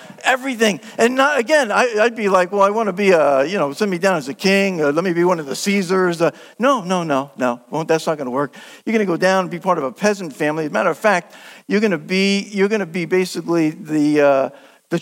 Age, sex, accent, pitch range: 50-69, male, American, 170-240 Hz